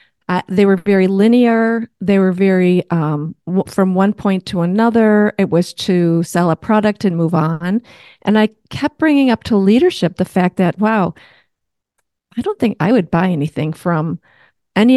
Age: 40-59